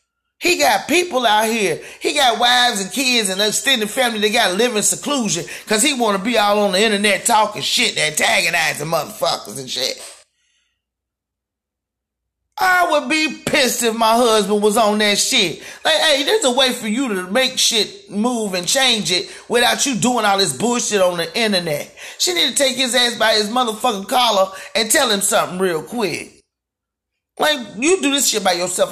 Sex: male